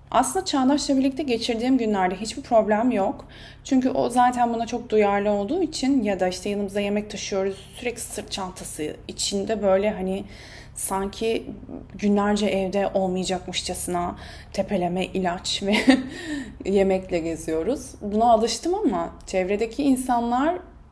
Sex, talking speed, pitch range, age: female, 120 wpm, 185-255 Hz, 20-39